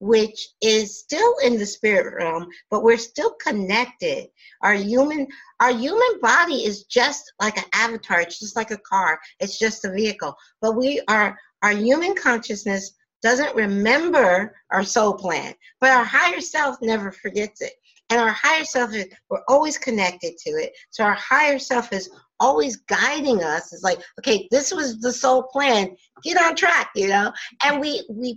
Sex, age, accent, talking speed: female, 50-69, American, 175 wpm